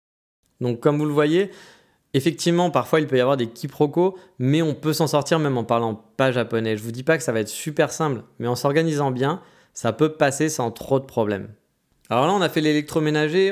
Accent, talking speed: French, 220 wpm